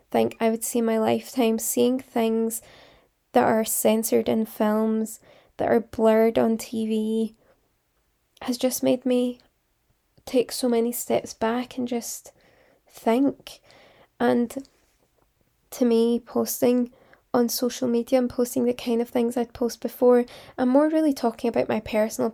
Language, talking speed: English, 140 wpm